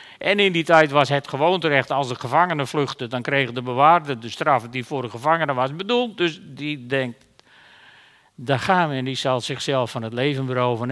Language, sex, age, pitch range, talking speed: Dutch, male, 50-69, 135-195 Hz, 205 wpm